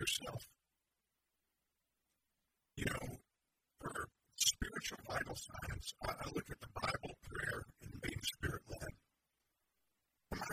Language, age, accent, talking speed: English, 40-59, American, 110 wpm